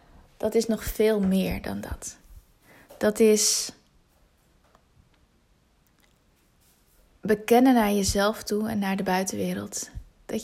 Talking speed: 105 wpm